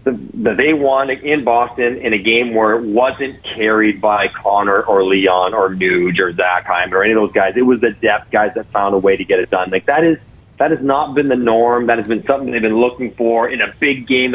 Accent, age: American, 40-59